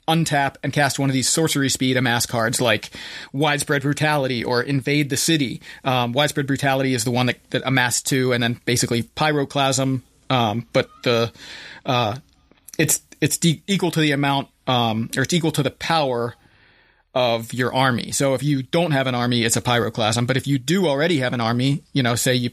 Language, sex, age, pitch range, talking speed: English, male, 30-49, 120-145 Hz, 195 wpm